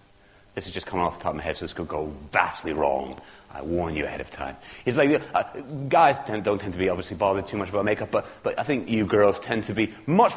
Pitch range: 100-160 Hz